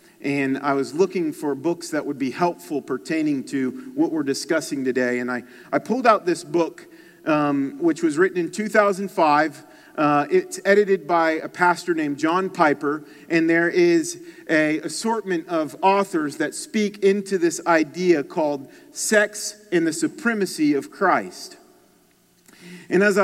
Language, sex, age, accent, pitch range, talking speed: English, male, 40-59, American, 160-230 Hz, 150 wpm